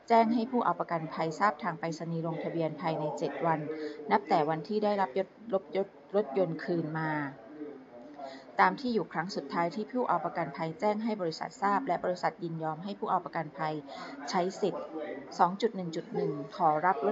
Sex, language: female, Thai